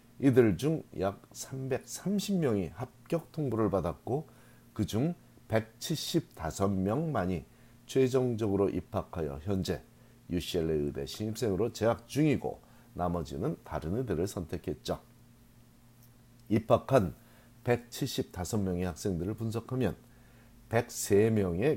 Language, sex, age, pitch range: Korean, male, 40-59, 90-130 Hz